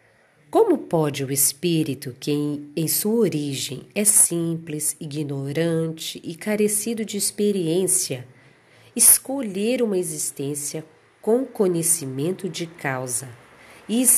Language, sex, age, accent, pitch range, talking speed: Portuguese, female, 40-59, Brazilian, 140-185 Hz, 95 wpm